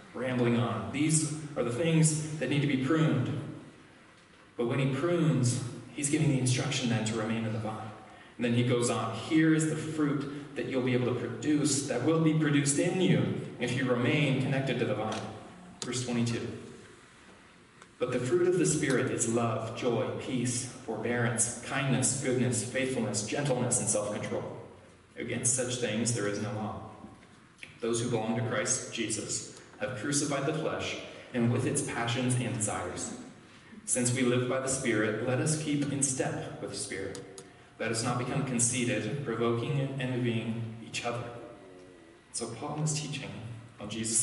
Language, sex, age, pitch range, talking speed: English, male, 20-39, 115-140 Hz, 170 wpm